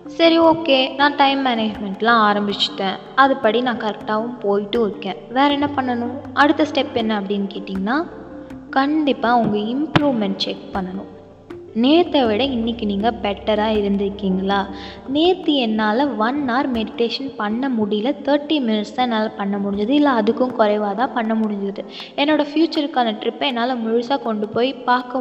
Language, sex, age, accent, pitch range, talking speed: Tamil, female, 20-39, native, 210-285 Hz, 135 wpm